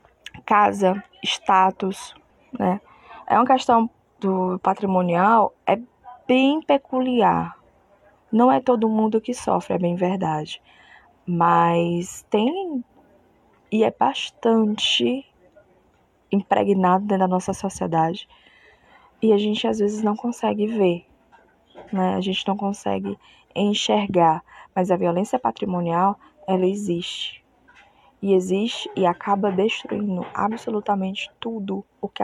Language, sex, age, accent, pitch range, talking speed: Portuguese, female, 10-29, Brazilian, 190-250 Hz, 110 wpm